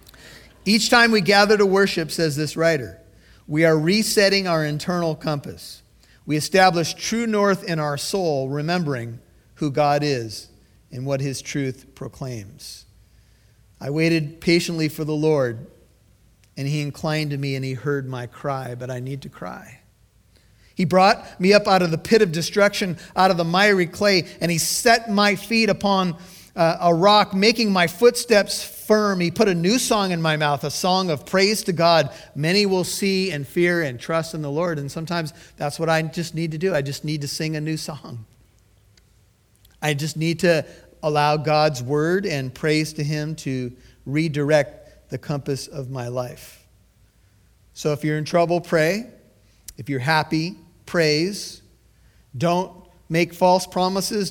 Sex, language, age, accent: male, English, 40-59, American